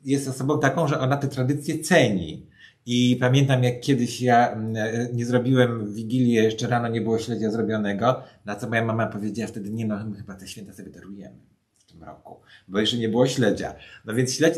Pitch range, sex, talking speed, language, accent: 105-130 Hz, male, 195 wpm, Polish, native